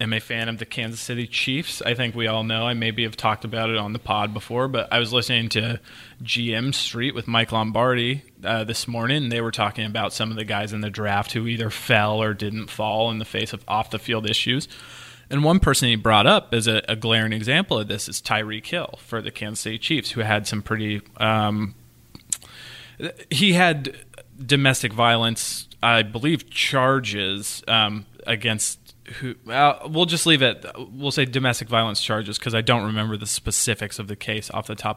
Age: 20-39